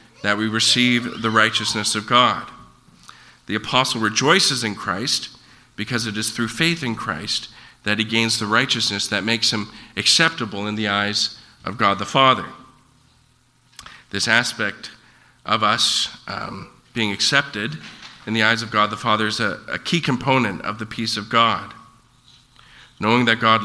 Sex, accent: male, American